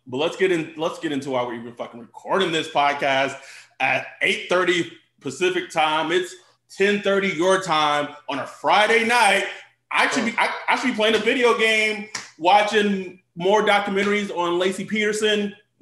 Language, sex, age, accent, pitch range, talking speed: English, male, 30-49, American, 150-200 Hz, 175 wpm